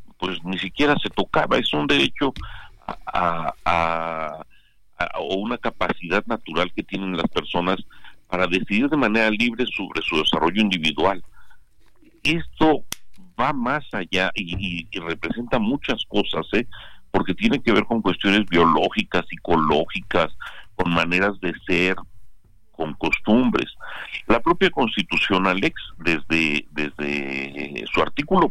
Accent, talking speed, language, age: Mexican, 130 wpm, Spanish, 50-69